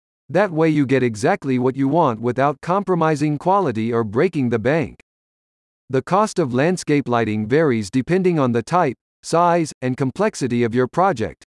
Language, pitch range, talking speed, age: English, 125-175 Hz, 160 wpm, 50-69